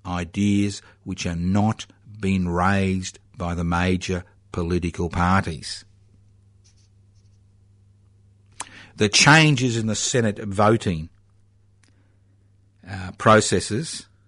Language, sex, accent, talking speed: English, male, Australian, 80 wpm